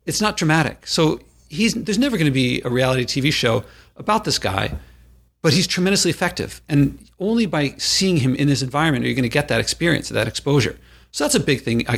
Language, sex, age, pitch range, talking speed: English, male, 50-69, 120-155 Hz, 220 wpm